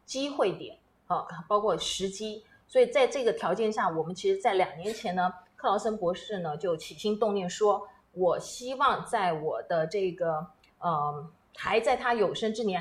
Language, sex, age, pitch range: Chinese, female, 30-49, 180-240 Hz